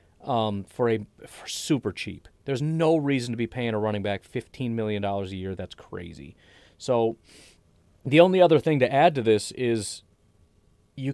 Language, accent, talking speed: English, American, 180 wpm